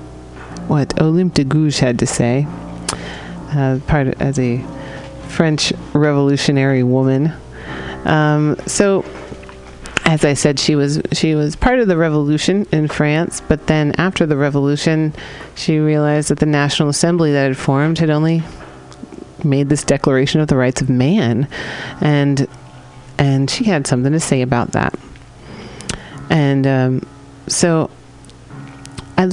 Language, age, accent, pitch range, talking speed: English, 40-59, American, 125-150 Hz, 135 wpm